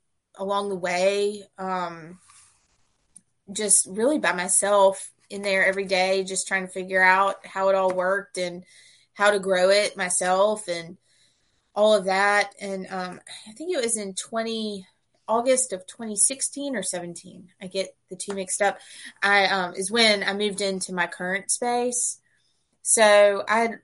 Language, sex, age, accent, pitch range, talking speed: English, female, 20-39, American, 180-200 Hz, 155 wpm